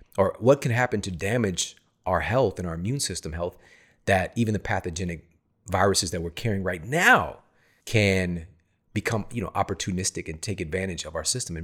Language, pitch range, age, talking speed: English, 90-110 Hz, 30-49, 180 wpm